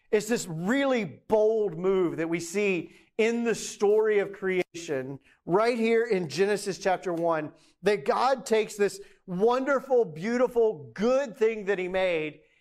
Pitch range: 190-230 Hz